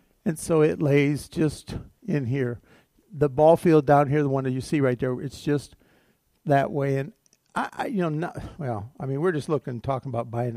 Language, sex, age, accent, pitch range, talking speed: English, male, 60-79, American, 120-150 Hz, 210 wpm